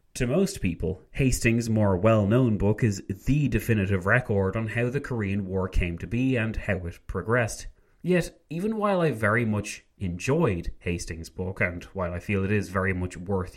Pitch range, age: 95-125 Hz, 30-49